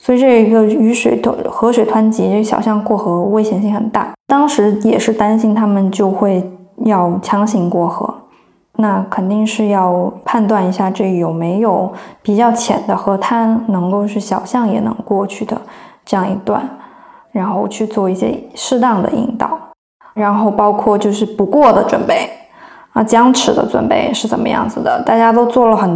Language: Chinese